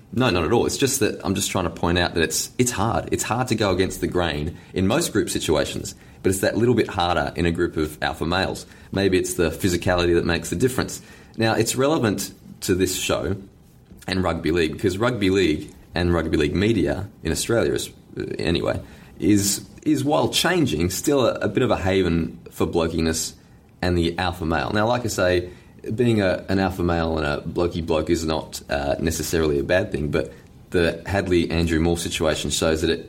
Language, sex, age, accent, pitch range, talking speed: English, male, 20-39, Australian, 85-100 Hz, 205 wpm